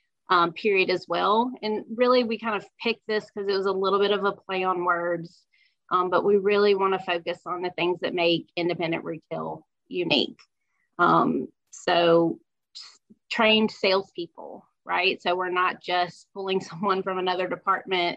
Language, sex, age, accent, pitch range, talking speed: English, female, 30-49, American, 175-195 Hz, 170 wpm